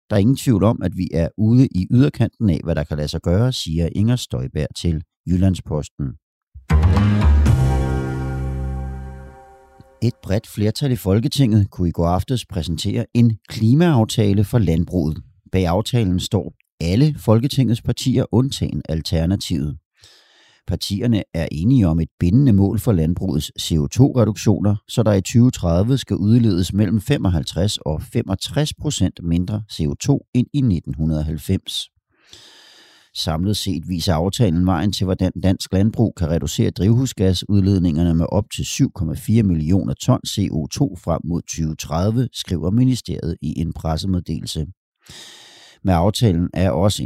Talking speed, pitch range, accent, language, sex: 135 wpm, 85-115 Hz, native, Danish, male